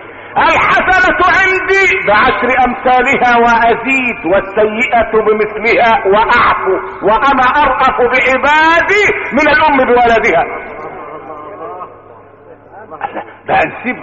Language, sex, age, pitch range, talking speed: Arabic, male, 50-69, 215-320 Hz, 65 wpm